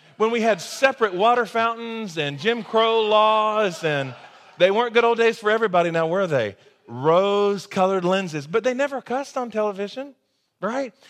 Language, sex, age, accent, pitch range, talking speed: English, male, 40-59, American, 150-210 Hz, 170 wpm